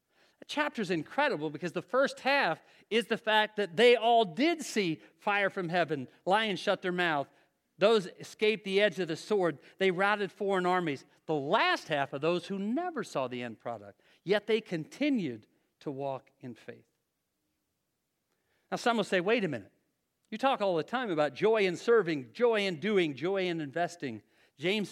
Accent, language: American, English